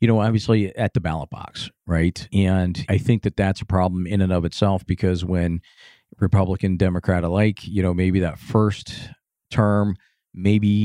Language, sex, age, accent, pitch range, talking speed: English, male, 50-69, American, 90-105 Hz, 170 wpm